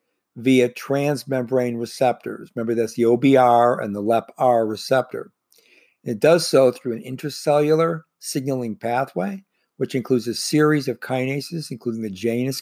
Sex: male